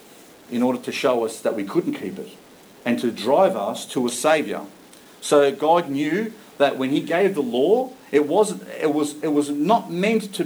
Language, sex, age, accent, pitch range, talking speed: English, male, 40-59, Australian, 125-175 Hz, 200 wpm